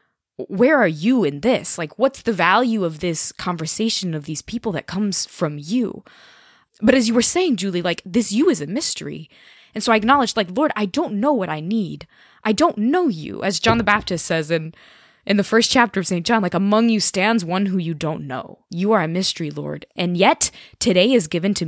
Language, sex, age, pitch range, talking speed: English, female, 20-39, 160-225 Hz, 220 wpm